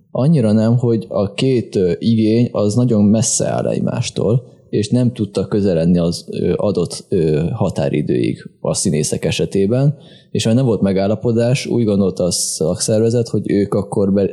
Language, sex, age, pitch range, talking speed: Hungarian, male, 20-39, 95-115 Hz, 140 wpm